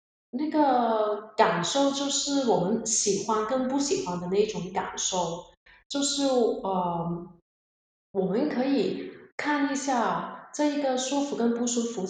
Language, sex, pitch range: Chinese, female, 190-245 Hz